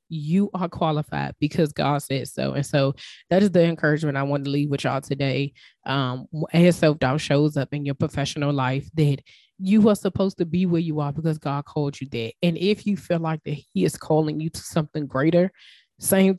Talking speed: 215 wpm